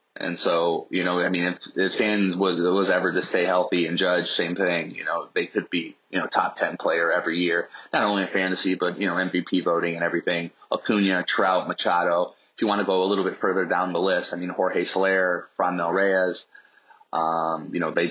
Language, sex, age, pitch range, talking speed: English, male, 20-39, 90-95 Hz, 220 wpm